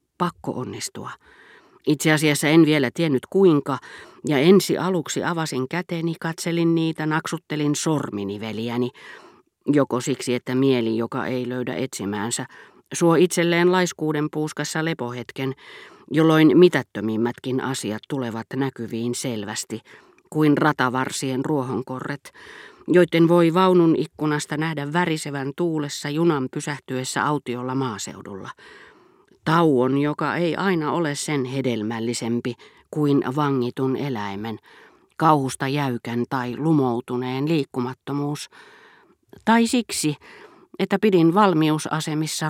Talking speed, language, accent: 100 wpm, Finnish, native